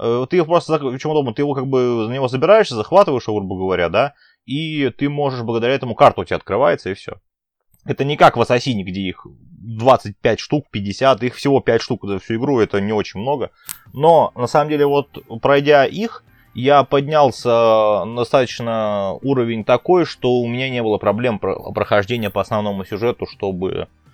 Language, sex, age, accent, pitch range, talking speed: Russian, male, 20-39, native, 105-130 Hz, 180 wpm